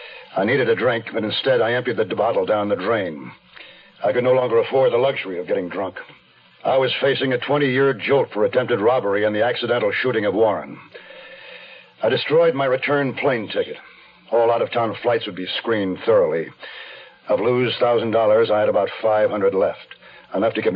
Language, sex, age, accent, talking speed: English, male, 60-79, American, 180 wpm